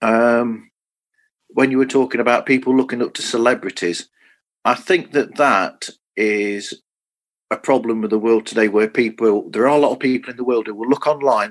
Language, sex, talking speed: English, male, 195 wpm